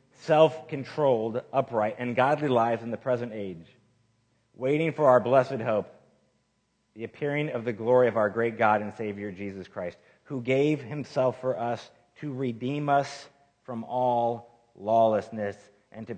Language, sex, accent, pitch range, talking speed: English, male, American, 110-150 Hz, 150 wpm